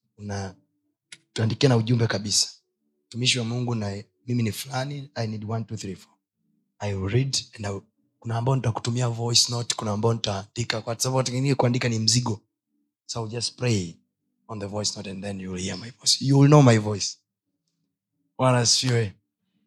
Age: 30-49